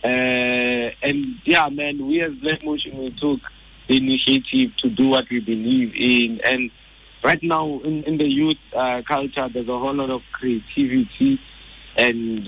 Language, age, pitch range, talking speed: English, 60-79, 115-135 Hz, 165 wpm